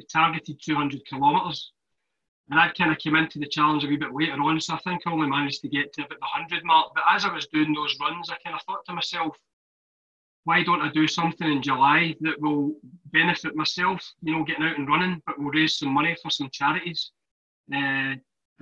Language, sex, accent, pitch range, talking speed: English, male, British, 145-160 Hz, 220 wpm